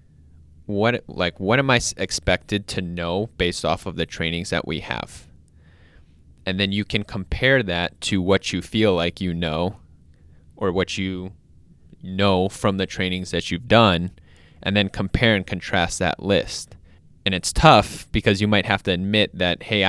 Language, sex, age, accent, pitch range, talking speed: English, male, 20-39, American, 85-100 Hz, 170 wpm